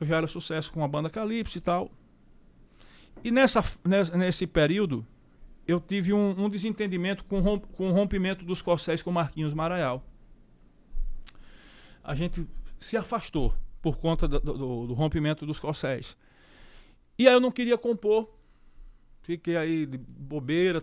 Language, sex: Portuguese, male